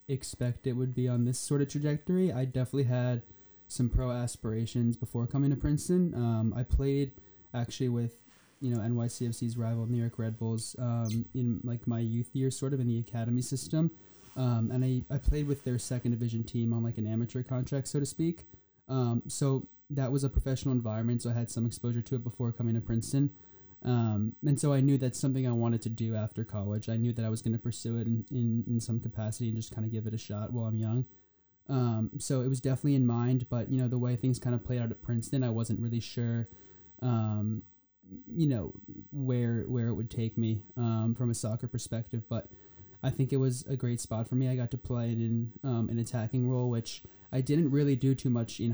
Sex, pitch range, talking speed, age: male, 115-130 Hz, 225 wpm, 20-39